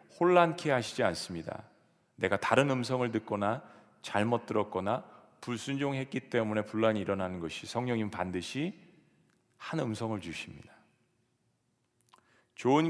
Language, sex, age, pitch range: Korean, male, 40-59, 100-130 Hz